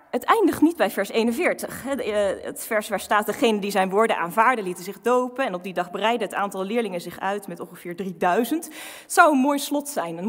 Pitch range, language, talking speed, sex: 210-285 Hz, Dutch, 220 wpm, female